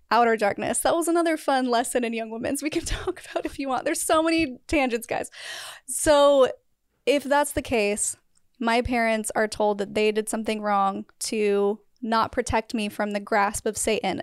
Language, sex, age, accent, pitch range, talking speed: English, female, 20-39, American, 220-265 Hz, 190 wpm